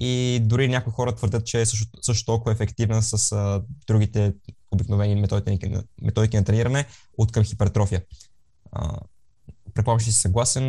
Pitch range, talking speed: 100-130 Hz, 155 wpm